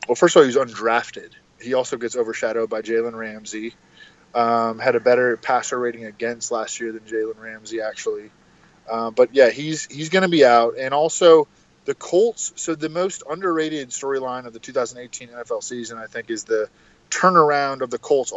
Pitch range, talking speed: 115-145 Hz, 185 wpm